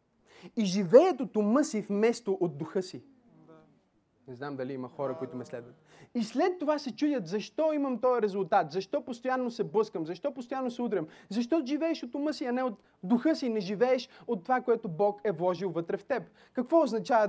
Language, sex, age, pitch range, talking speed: Bulgarian, male, 30-49, 205-280 Hz, 200 wpm